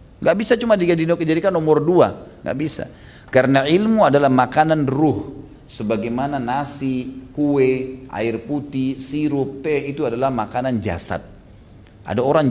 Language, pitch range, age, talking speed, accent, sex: Indonesian, 120-180 Hz, 40-59, 125 wpm, native, male